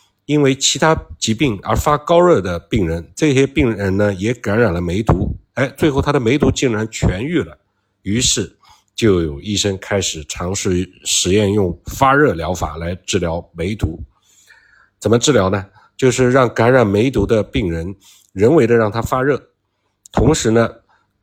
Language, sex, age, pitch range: Chinese, male, 50-69, 95-115 Hz